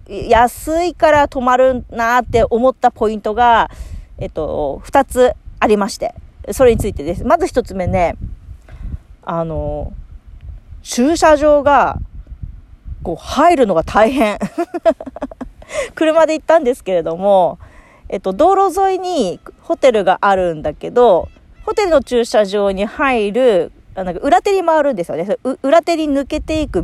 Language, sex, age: Japanese, female, 40-59